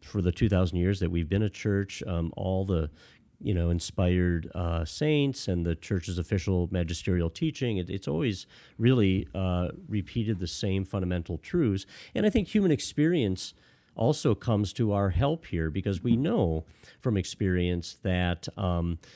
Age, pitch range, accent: 40-59, 90-110 Hz, American